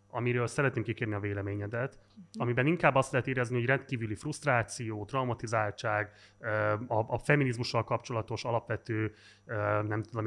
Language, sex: Hungarian, male